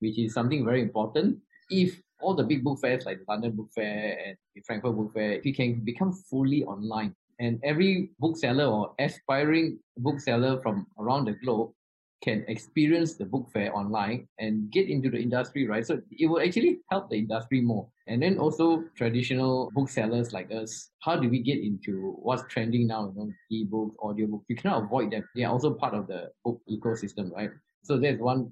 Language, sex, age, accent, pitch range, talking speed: English, male, 20-39, Malaysian, 110-145 Hz, 195 wpm